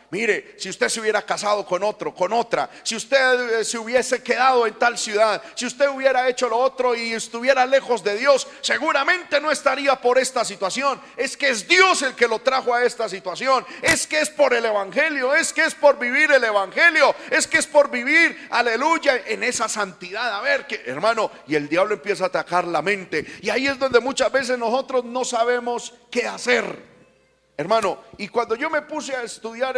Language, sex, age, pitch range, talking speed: Spanish, male, 40-59, 230-275 Hz, 200 wpm